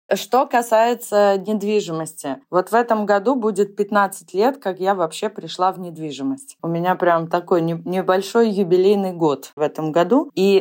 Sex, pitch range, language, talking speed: female, 170-210 Hz, Russian, 155 wpm